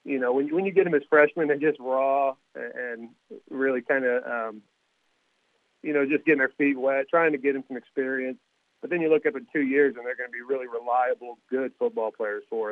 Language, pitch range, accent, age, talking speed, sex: English, 125-145 Hz, American, 40-59, 240 wpm, male